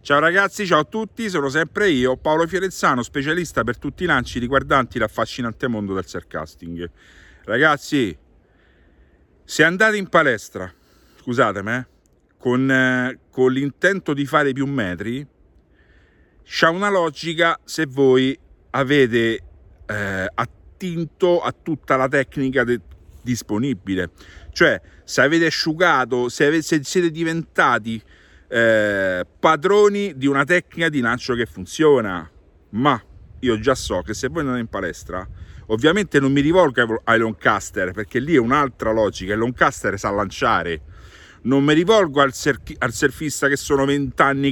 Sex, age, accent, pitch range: male, 50-69, native, 100-160 Hz